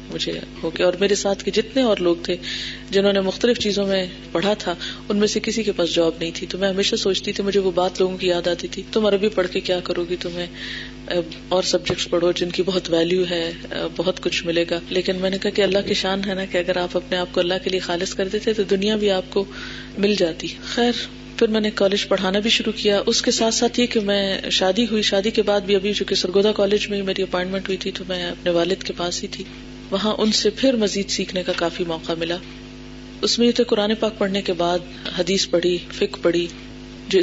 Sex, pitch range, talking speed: female, 180-210 Hz, 240 wpm